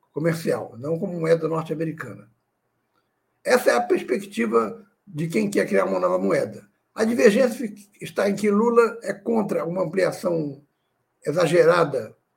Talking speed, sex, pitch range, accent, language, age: 130 wpm, male, 160-205 Hz, Brazilian, Portuguese, 60-79